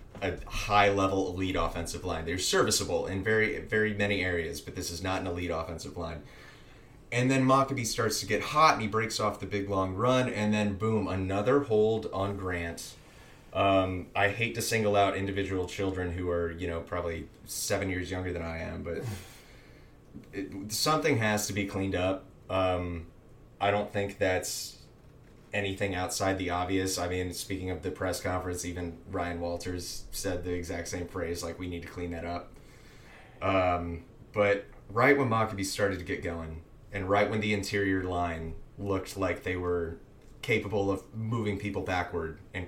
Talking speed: 175 wpm